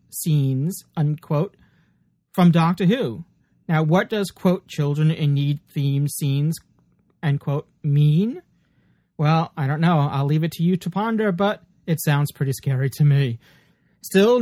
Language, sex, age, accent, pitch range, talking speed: English, male, 30-49, American, 140-195 Hz, 145 wpm